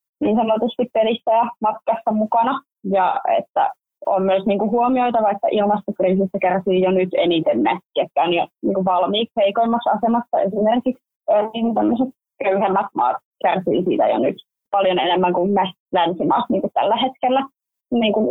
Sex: female